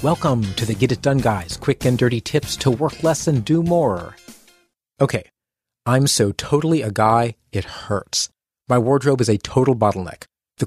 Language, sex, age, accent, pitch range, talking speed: English, male, 40-59, American, 110-150 Hz, 180 wpm